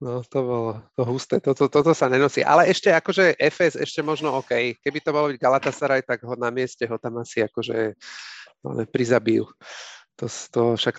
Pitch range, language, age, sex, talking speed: 125-155 Hz, Slovak, 40-59, male, 180 wpm